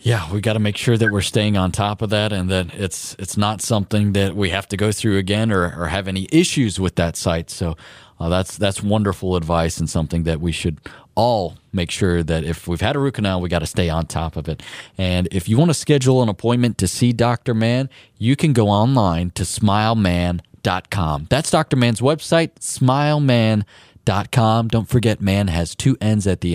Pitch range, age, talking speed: 95-120 Hz, 30-49, 215 wpm